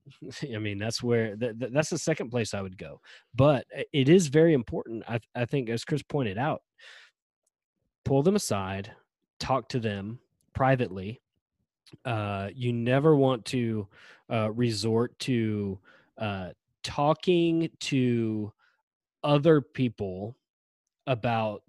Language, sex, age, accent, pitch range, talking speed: English, male, 20-39, American, 110-130 Hz, 120 wpm